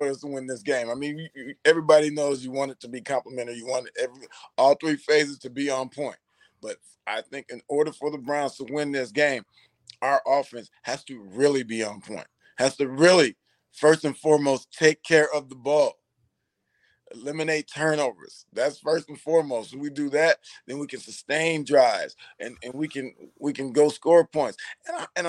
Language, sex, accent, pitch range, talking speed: English, male, American, 140-170 Hz, 190 wpm